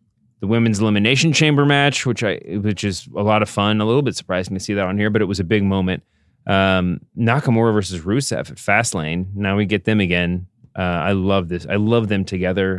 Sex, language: male, English